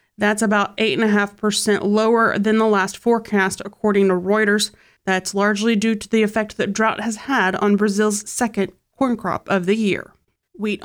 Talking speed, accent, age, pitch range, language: 165 wpm, American, 30-49, 200-230 Hz, English